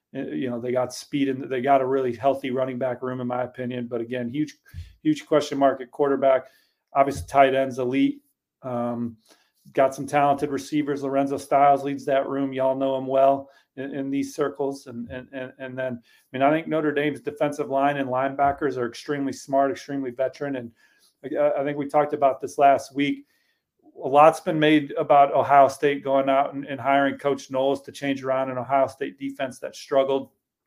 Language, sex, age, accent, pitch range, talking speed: English, male, 40-59, American, 130-145 Hz, 200 wpm